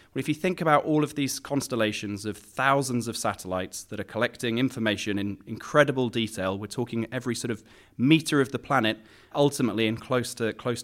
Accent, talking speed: British, 170 wpm